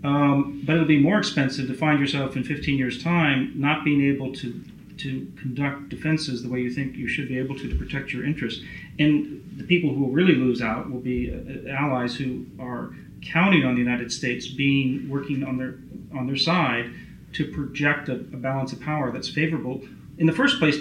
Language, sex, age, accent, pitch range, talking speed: English, male, 40-59, American, 130-160 Hz, 210 wpm